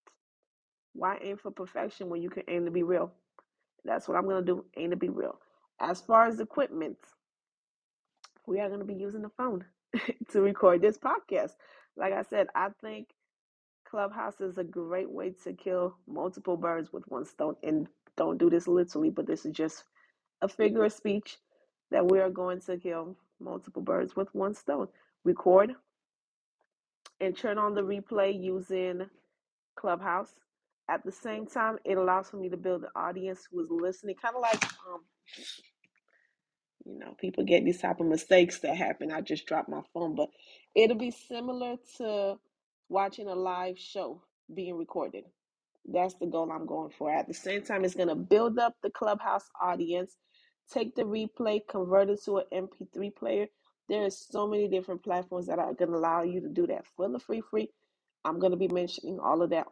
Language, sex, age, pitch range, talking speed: English, female, 20-39, 180-215 Hz, 185 wpm